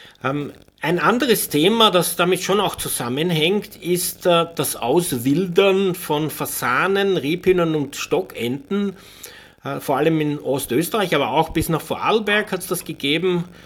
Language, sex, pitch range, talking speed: German, male, 135-175 Hz, 125 wpm